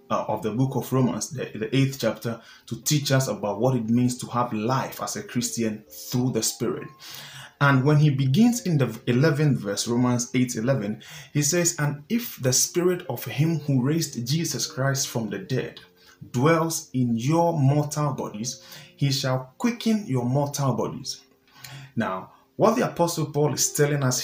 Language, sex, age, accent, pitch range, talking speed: English, male, 30-49, Nigerian, 120-150 Hz, 175 wpm